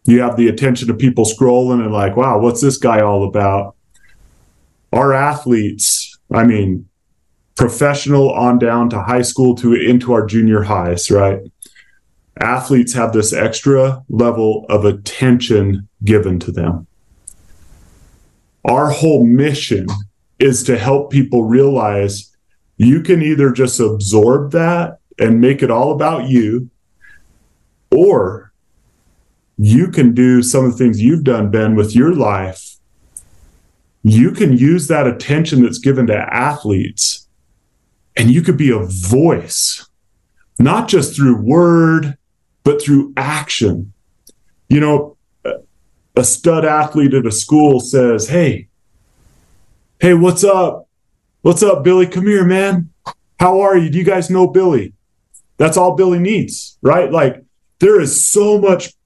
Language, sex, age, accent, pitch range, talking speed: English, male, 30-49, American, 105-150 Hz, 135 wpm